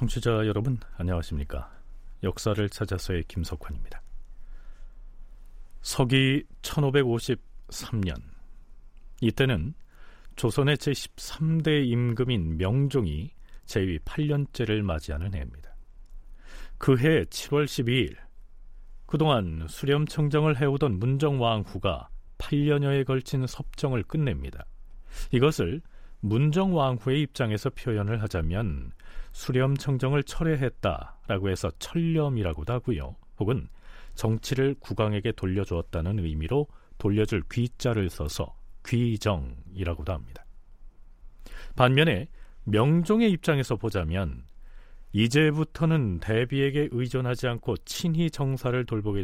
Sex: male